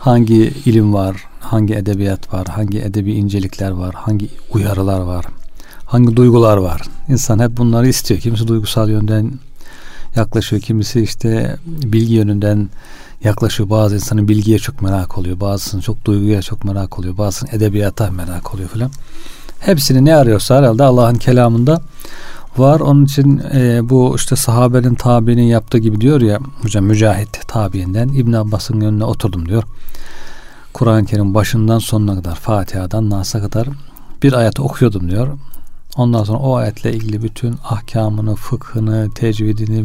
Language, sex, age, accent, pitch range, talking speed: Turkish, male, 40-59, native, 105-125 Hz, 140 wpm